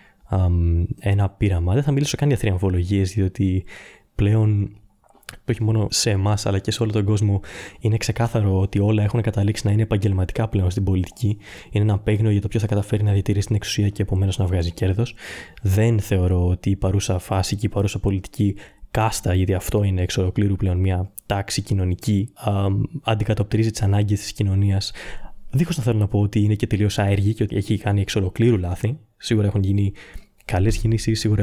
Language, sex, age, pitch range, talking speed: Greek, male, 20-39, 100-115 Hz, 180 wpm